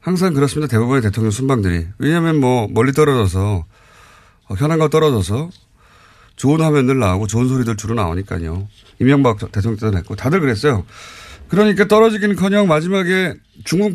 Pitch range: 105-155 Hz